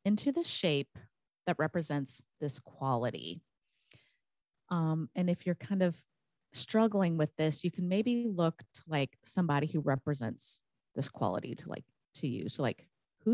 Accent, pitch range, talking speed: American, 145-180 Hz, 155 wpm